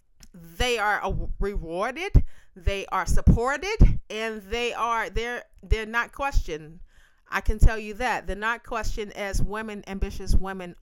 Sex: female